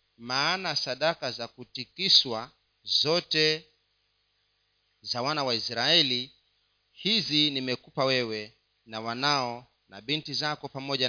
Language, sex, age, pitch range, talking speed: Swahili, male, 40-59, 115-155 Hz, 95 wpm